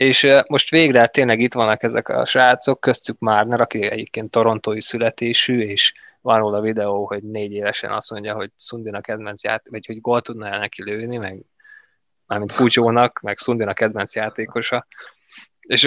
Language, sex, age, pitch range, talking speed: Hungarian, male, 20-39, 105-115 Hz, 165 wpm